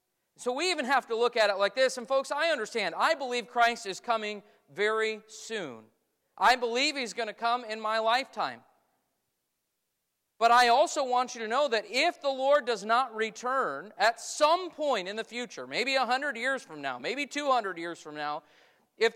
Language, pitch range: English, 220-290 Hz